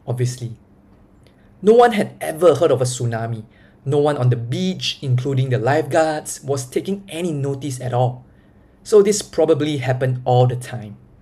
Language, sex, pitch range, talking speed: English, male, 125-150 Hz, 160 wpm